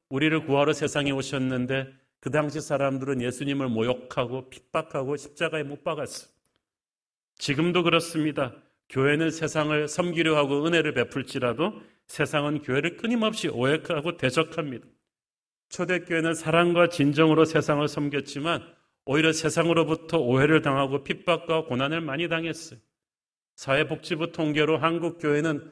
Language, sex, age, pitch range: Korean, male, 40-59, 135-165 Hz